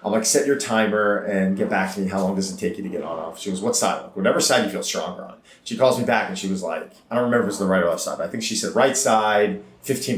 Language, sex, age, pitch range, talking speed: English, male, 30-49, 90-110 Hz, 340 wpm